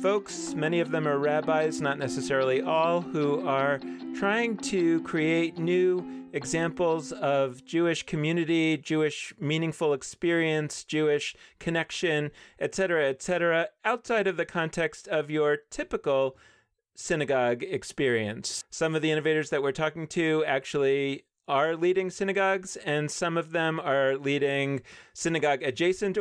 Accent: American